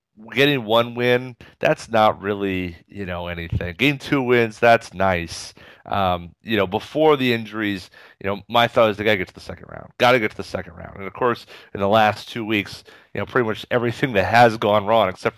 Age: 30-49